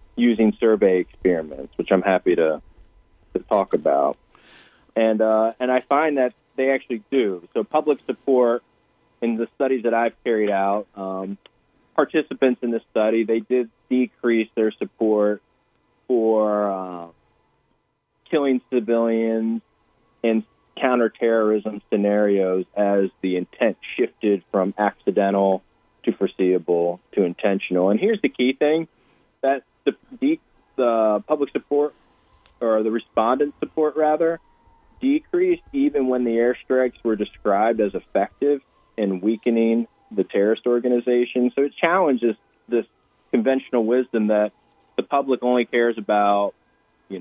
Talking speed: 125 wpm